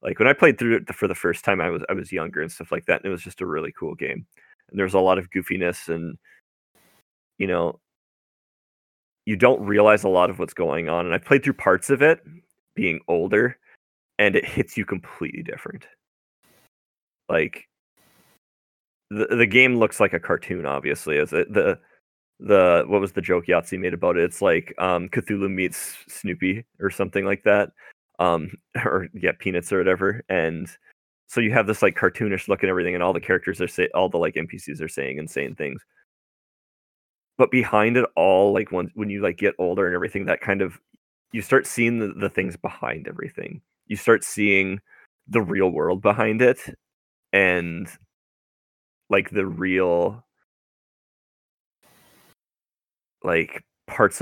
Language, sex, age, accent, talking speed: English, male, 20-39, American, 175 wpm